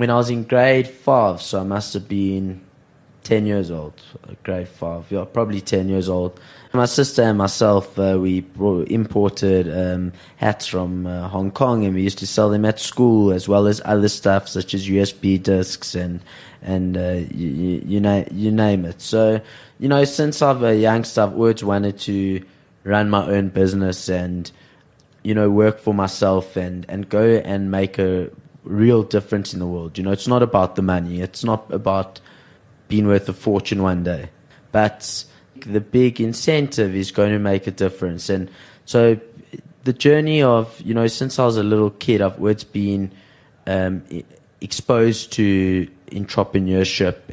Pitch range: 95-115 Hz